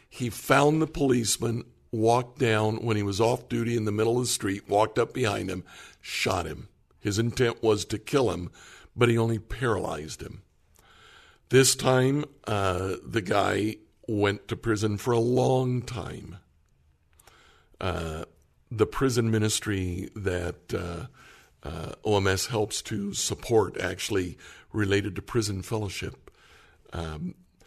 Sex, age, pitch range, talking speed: male, 60-79, 105-125 Hz, 135 wpm